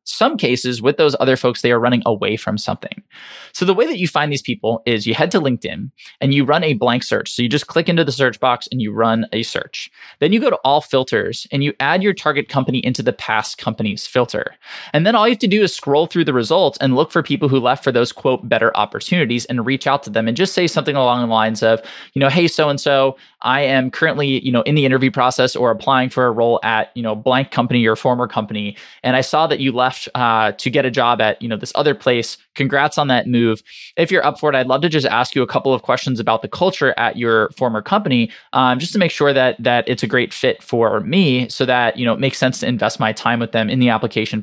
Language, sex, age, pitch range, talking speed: English, male, 20-39, 120-145 Hz, 265 wpm